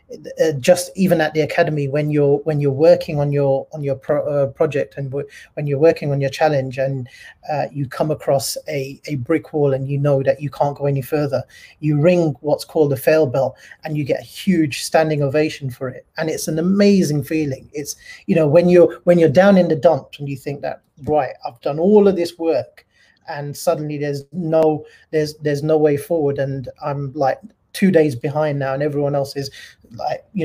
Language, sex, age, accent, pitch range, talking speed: English, male, 30-49, British, 140-165 Hz, 210 wpm